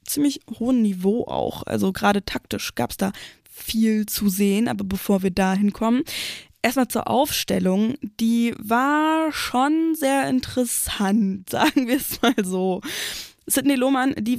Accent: German